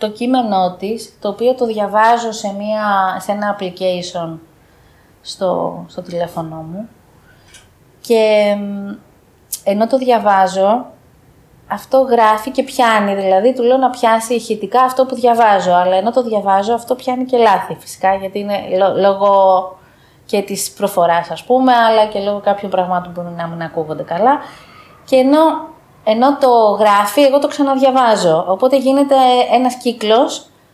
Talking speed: 135 wpm